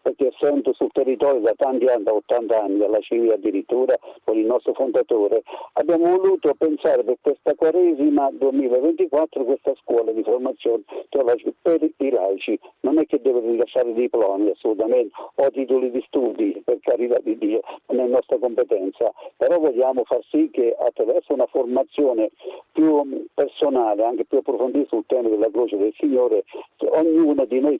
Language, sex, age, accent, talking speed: Italian, male, 60-79, native, 160 wpm